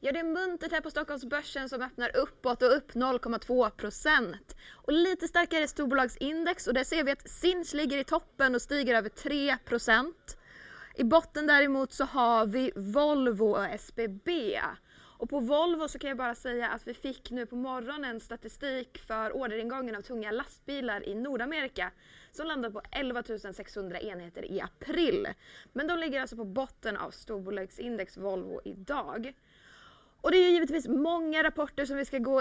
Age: 20-39